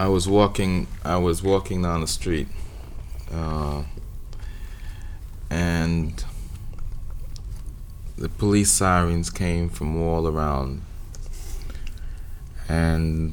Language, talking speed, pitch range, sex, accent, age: English, 85 wpm, 75-90 Hz, male, American, 20-39